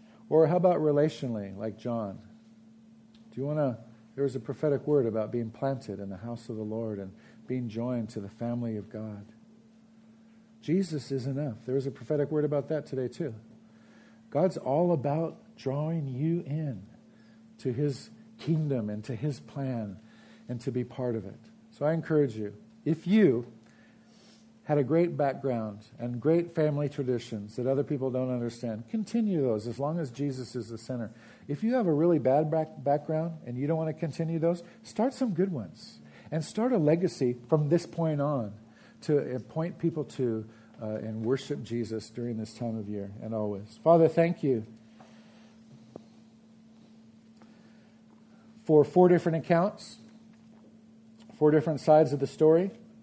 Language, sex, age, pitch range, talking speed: English, male, 50-69, 120-180 Hz, 165 wpm